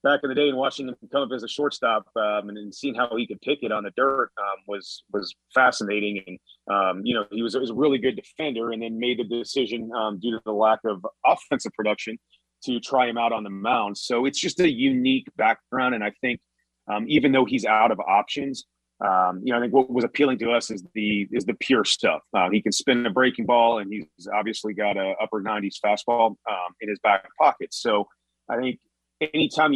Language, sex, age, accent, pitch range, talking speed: English, male, 30-49, American, 105-130 Hz, 230 wpm